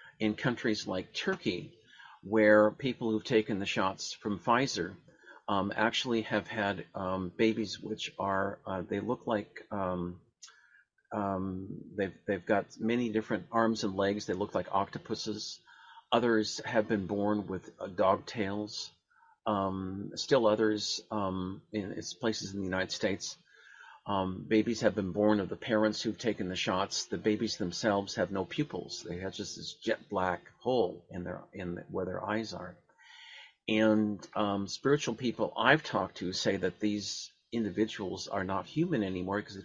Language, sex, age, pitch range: English, male, 40-59, 95-110 Hz